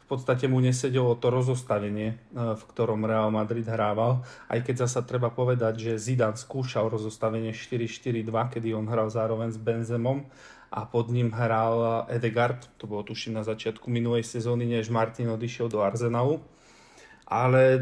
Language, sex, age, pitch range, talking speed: Slovak, male, 40-59, 115-125 Hz, 150 wpm